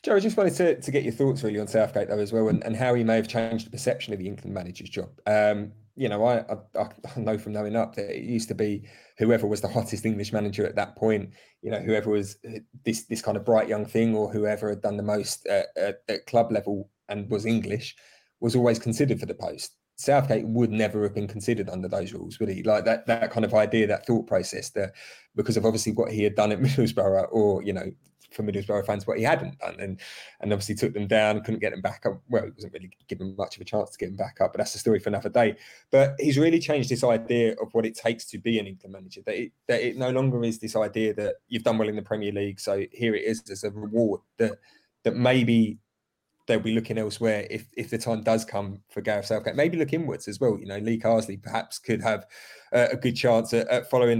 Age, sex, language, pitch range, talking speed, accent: 20-39, male, English, 105-120 Hz, 255 wpm, British